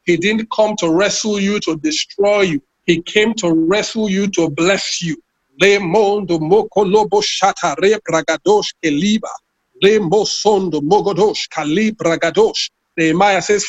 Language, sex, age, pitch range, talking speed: English, male, 50-69, 175-215 Hz, 130 wpm